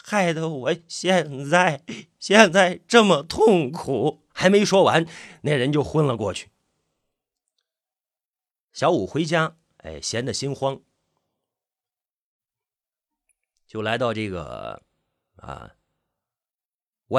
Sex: male